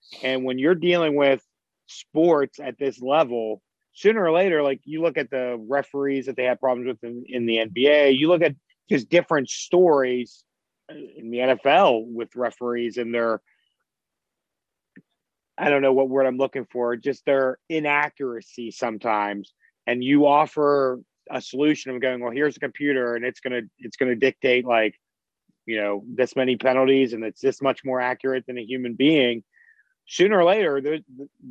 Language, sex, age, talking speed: English, male, 30-49, 175 wpm